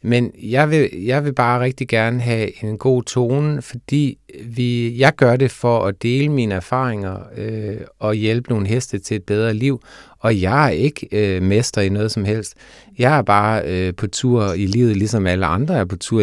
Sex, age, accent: male, 30-49, native